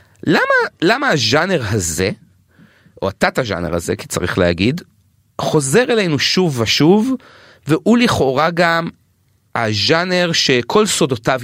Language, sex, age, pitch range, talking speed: Hebrew, male, 30-49, 130-180 Hz, 110 wpm